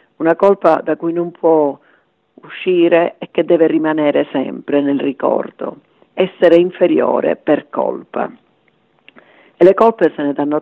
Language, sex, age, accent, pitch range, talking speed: Italian, female, 50-69, native, 150-175 Hz, 135 wpm